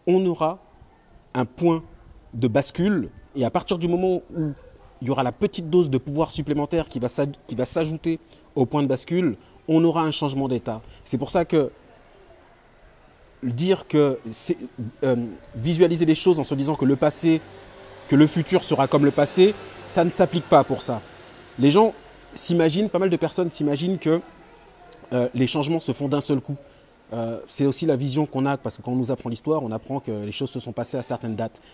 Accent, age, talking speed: French, 30-49, 195 wpm